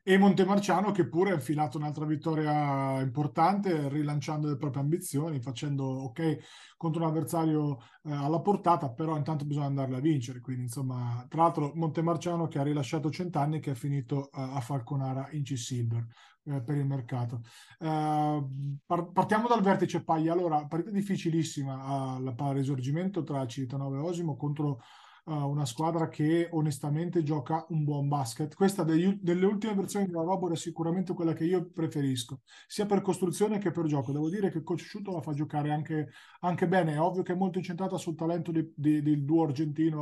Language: Italian